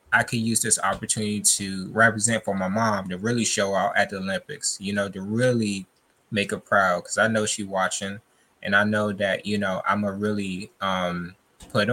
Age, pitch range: 20-39, 105-130 Hz